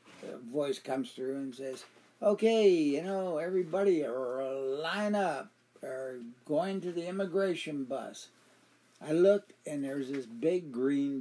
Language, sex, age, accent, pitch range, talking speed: English, male, 60-79, American, 140-185 Hz, 135 wpm